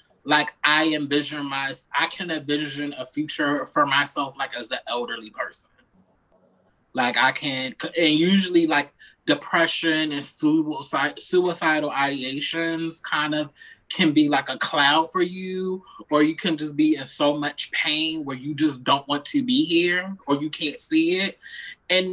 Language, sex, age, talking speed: English, male, 20-39, 160 wpm